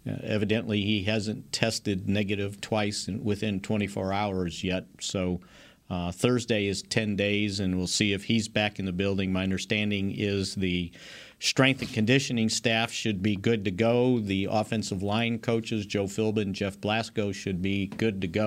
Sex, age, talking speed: male, 50-69, 170 wpm